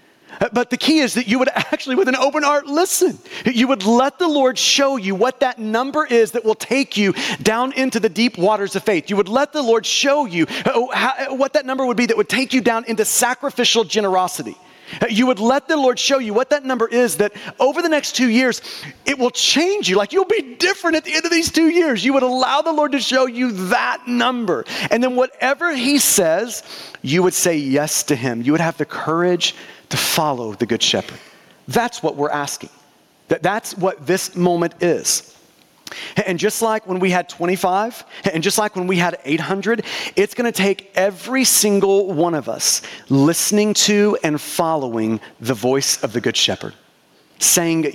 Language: English